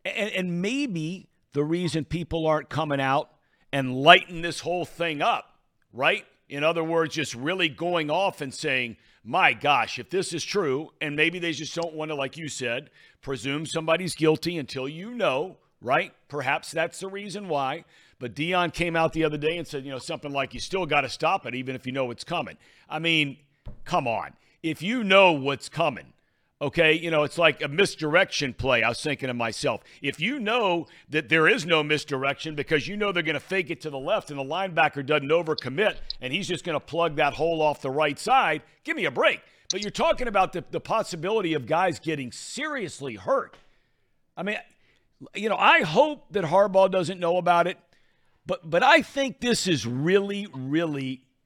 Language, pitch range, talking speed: English, 140-180 Hz, 200 wpm